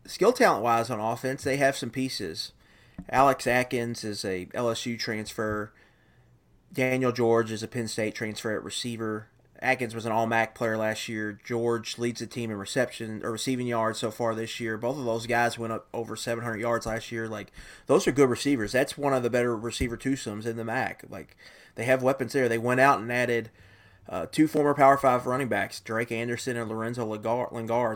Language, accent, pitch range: English, American, 110-130 Hz